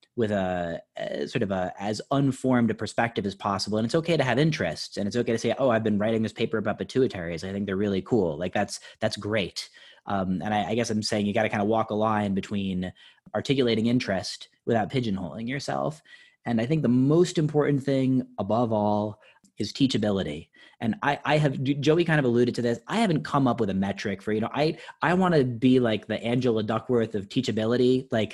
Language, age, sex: English, 30-49, male